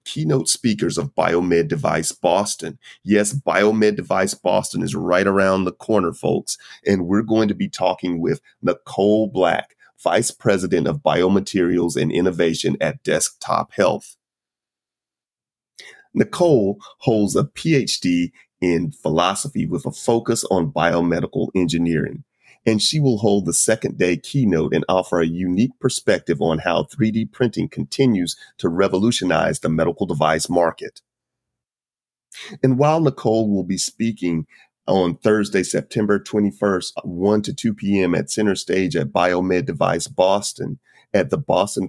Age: 30-49